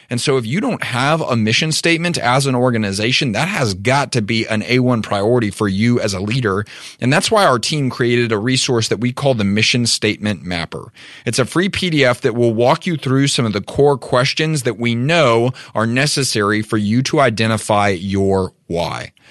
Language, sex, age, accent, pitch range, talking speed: English, male, 30-49, American, 110-135 Hz, 200 wpm